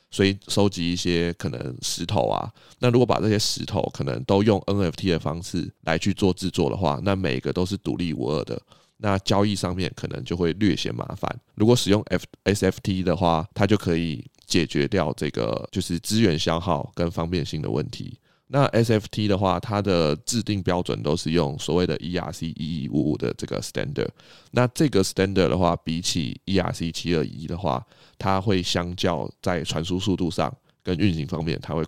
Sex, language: male, Chinese